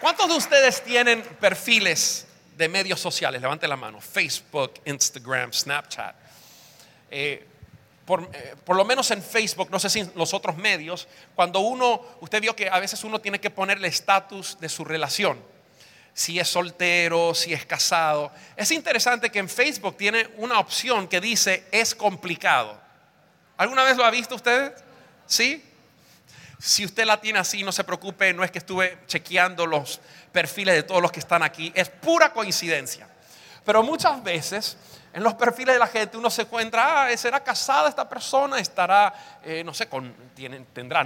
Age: 40-59